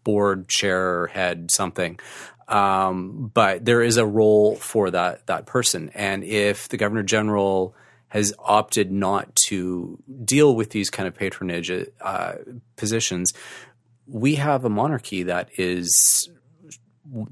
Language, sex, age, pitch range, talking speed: English, male, 30-49, 100-120 Hz, 130 wpm